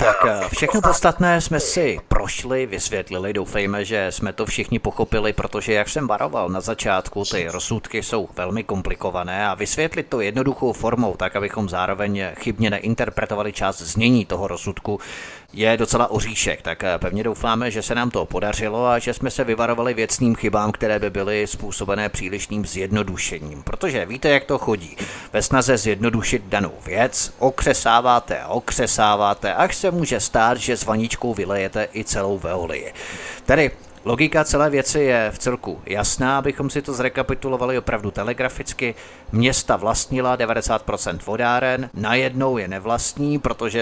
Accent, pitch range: native, 105-125 Hz